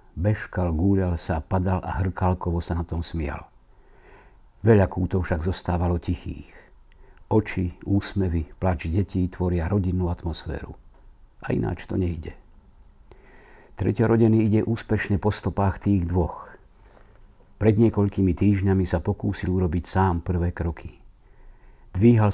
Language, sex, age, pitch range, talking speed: Slovak, male, 60-79, 90-105 Hz, 115 wpm